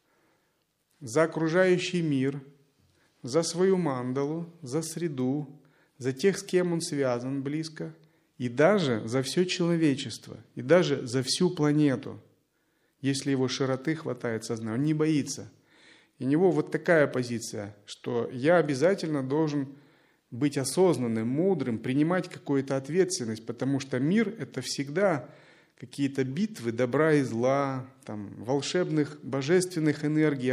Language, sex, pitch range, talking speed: Russian, male, 130-160 Hz, 120 wpm